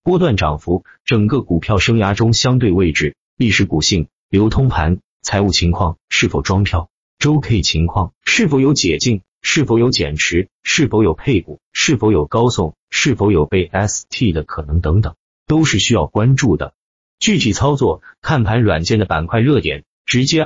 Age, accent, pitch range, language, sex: 30-49, native, 90-125 Hz, Chinese, male